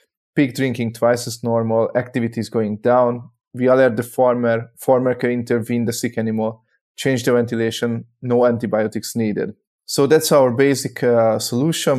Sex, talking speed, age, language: male, 150 wpm, 20-39, English